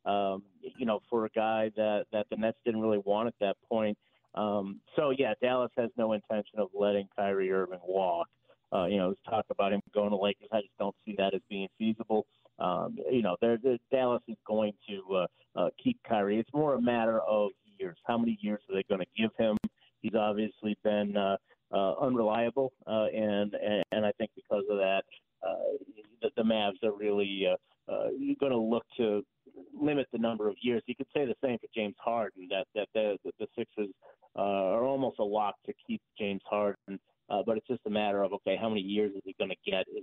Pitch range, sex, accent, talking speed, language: 100-120 Hz, male, American, 215 wpm, English